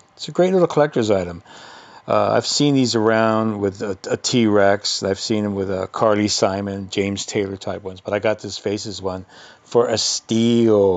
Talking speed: 190 wpm